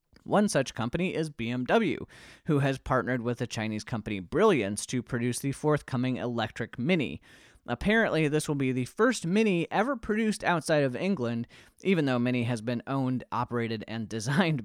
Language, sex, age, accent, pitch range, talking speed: English, male, 30-49, American, 120-170 Hz, 165 wpm